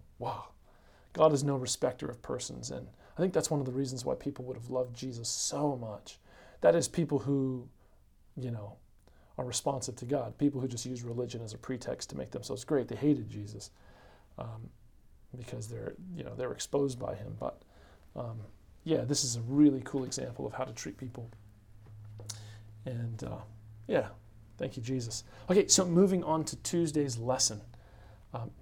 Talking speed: 180 wpm